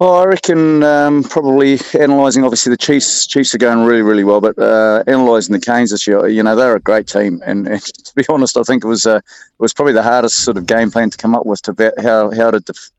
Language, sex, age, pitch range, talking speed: English, male, 30-49, 105-120 Hz, 260 wpm